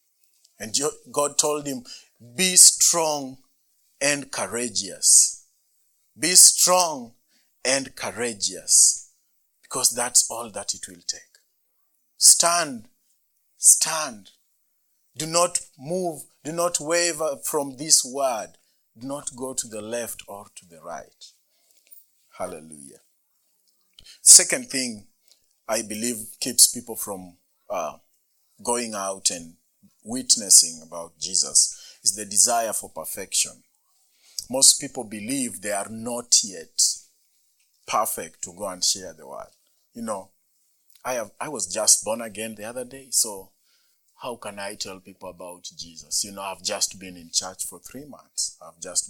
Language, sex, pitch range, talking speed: English, male, 100-145 Hz, 130 wpm